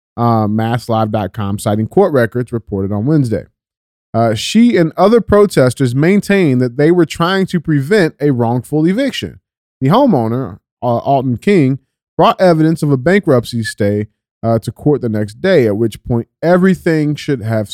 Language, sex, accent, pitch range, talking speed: English, male, American, 110-150 Hz, 155 wpm